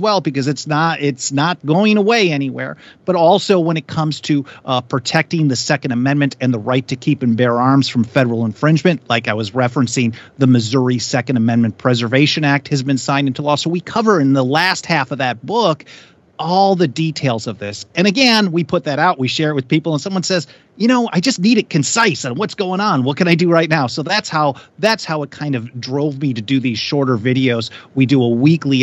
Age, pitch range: 30-49, 125-160 Hz